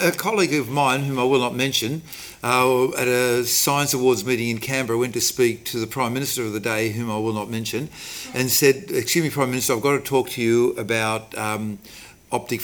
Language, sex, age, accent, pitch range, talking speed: English, male, 50-69, Australian, 115-140 Hz, 225 wpm